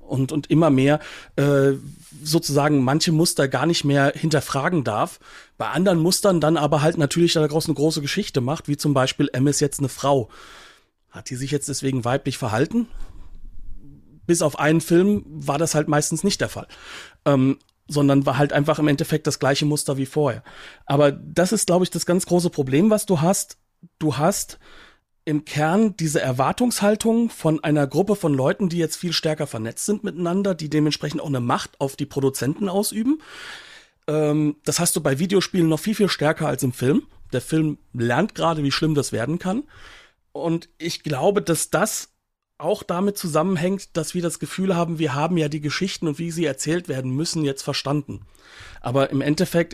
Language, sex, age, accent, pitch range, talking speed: German, male, 40-59, German, 135-165 Hz, 185 wpm